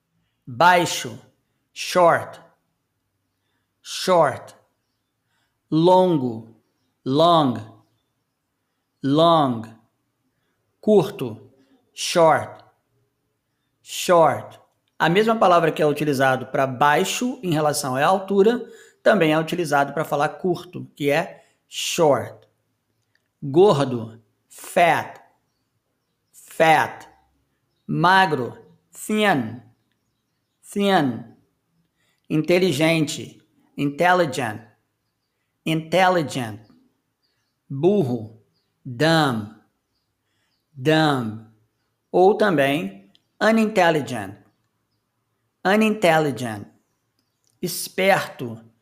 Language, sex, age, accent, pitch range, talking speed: Portuguese, male, 50-69, Brazilian, 120-175 Hz, 60 wpm